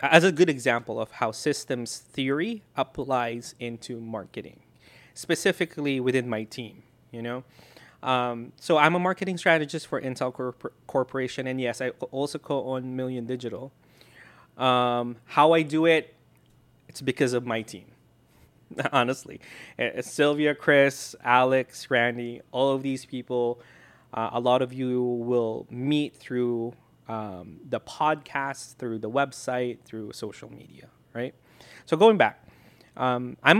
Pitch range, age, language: 120-140 Hz, 20-39, English